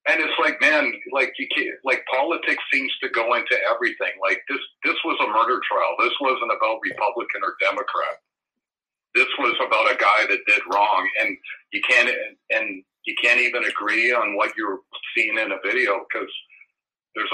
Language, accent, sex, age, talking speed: English, American, male, 50-69, 180 wpm